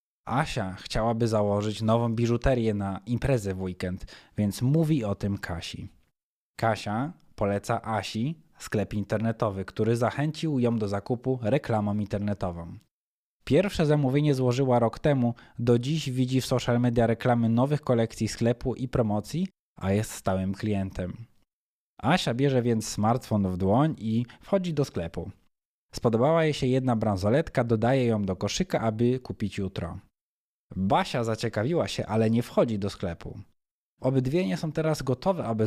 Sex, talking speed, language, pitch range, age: male, 140 wpm, Polish, 100-130 Hz, 20-39